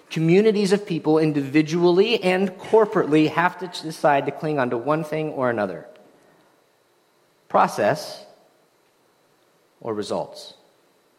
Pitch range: 125-160 Hz